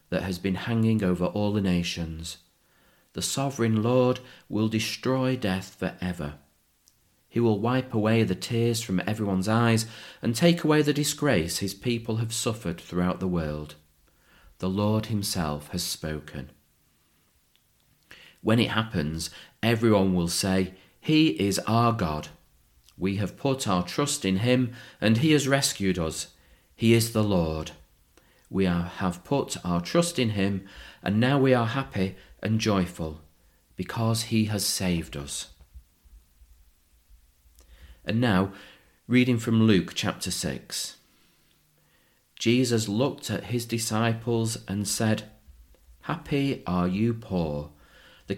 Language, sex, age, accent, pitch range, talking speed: English, male, 40-59, British, 80-115 Hz, 130 wpm